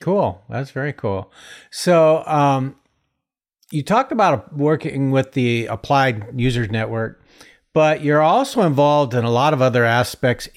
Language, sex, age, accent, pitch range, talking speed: English, male, 50-69, American, 115-145 Hz, 140 wpm